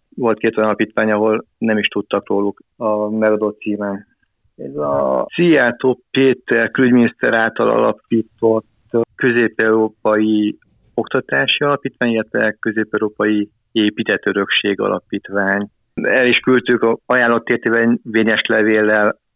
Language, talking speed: Hungarian, 105 wpm